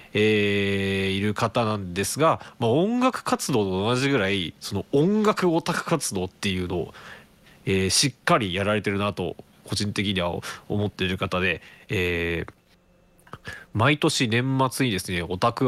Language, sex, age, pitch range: Japanese, male, 20-39, 95-130 Hz